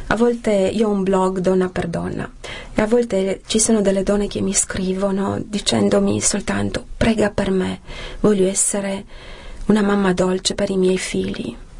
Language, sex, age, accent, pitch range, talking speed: Italian, female, 40-59, native, 185-220 Hz, 170 wpm